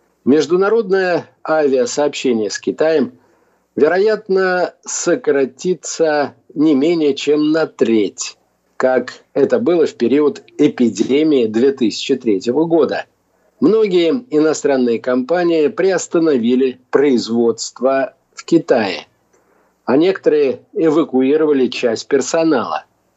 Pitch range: 135-215 Hz